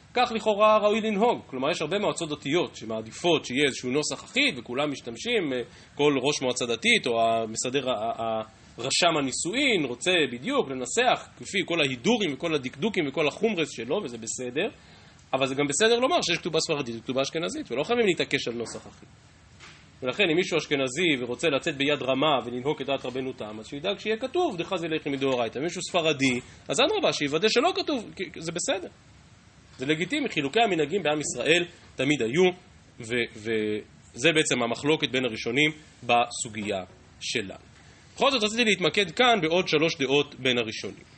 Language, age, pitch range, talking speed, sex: Hebrew, 20-39, 125-180 Hz, 145 wpm, male